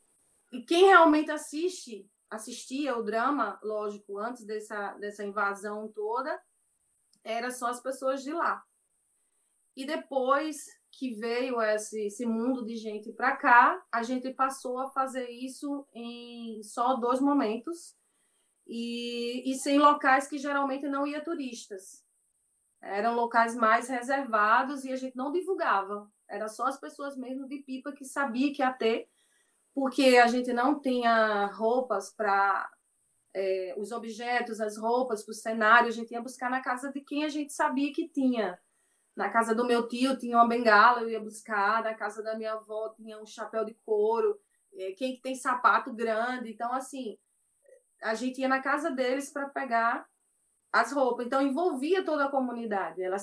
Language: Portuguese